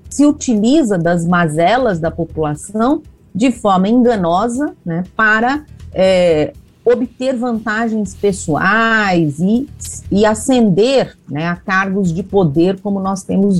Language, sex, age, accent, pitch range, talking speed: Portuguese, female, 40-59, Brazilian, 175-235 Hz, 110 wpm